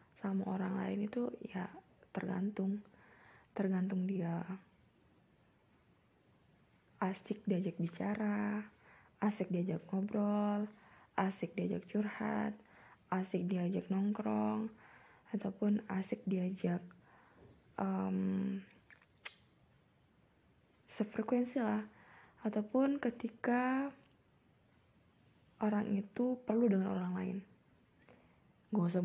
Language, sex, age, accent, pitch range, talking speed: Indonesian, female, 20-39, native, 185-215 Hz, 75 wpm